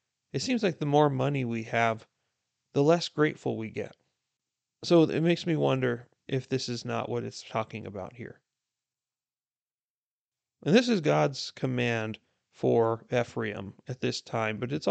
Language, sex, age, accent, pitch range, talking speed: English, male, 30-49, American, 115-135 Hz, 155 wpm